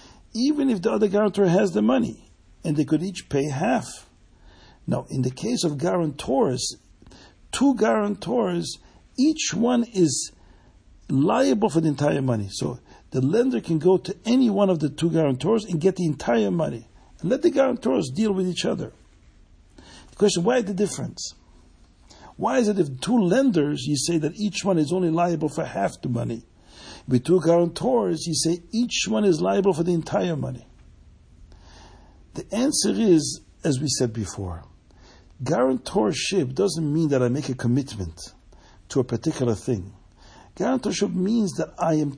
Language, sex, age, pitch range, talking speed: English, male, 60-79, 120-195 Hz, 165 wpm